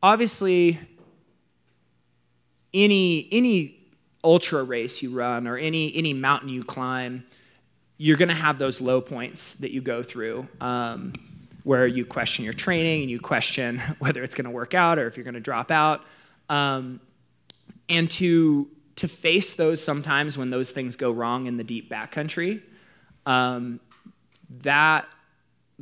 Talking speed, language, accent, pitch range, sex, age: 145 wpm, English, American, 120-150 Hz, male, 20-39